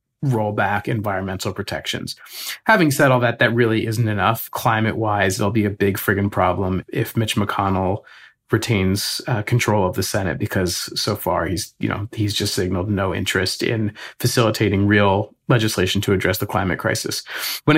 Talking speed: 165 wpm